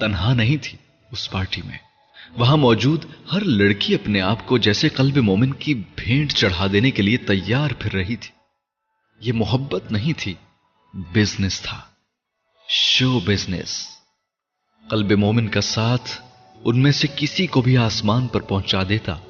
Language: Urdu